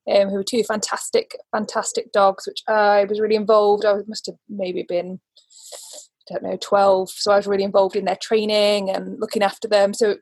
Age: 20-39